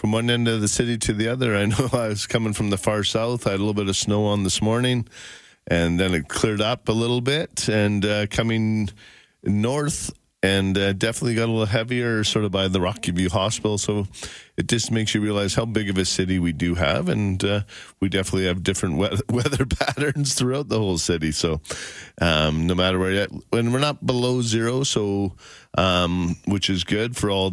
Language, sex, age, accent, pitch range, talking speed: English, male, 40-59, American, 95-115 Hz, 215 wpm